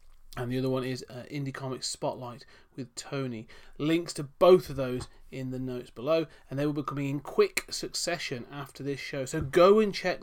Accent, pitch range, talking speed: British, 140-190 Hz, 205 wpm